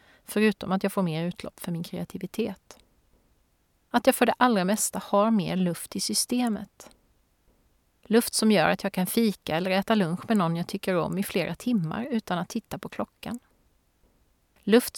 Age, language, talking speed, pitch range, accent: 30-49, Swedish, 175 wpm, 175-215 Hz, native